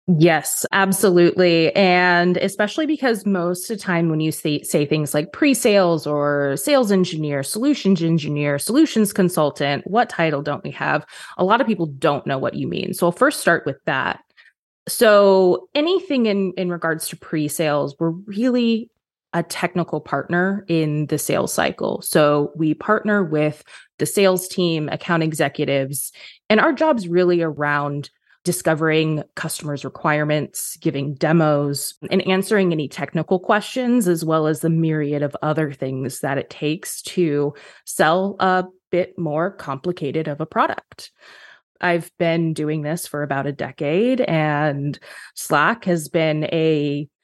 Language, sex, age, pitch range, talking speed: English, female, 20-39, 150-190 Hz, 145 wpm